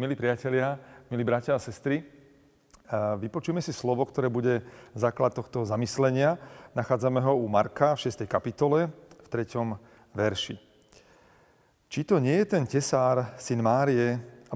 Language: Slovak